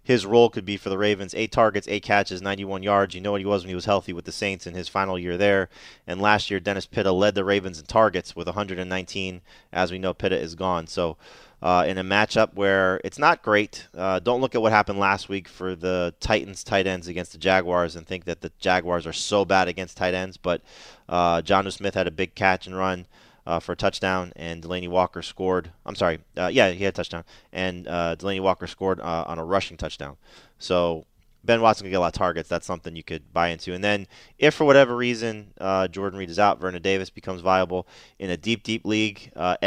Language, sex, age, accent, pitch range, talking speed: English, male, 30-49, American, 90-100 Hz, 235 wpm